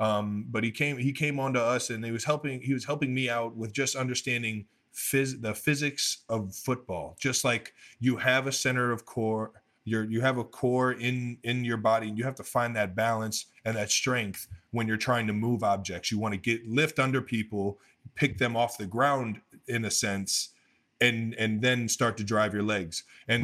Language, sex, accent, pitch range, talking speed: English, male, American, 105-125 Hz, 210 wpm